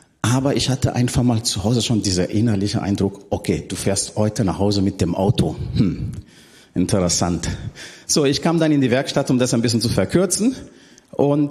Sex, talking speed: male, 190 wpm